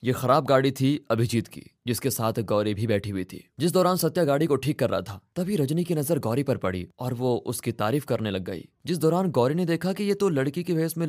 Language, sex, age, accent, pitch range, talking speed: Hindi, male, 20-39, native, 105-135 Hz, 260 wpm